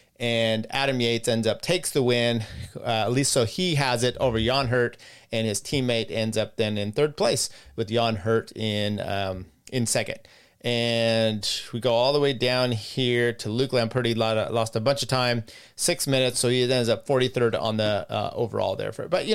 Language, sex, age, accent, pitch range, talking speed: English, male, 30-49, American, 115-145 Hz, 205 wpm